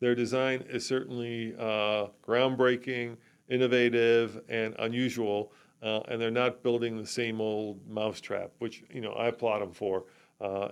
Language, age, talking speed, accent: English, 40-59, 145 wpm, American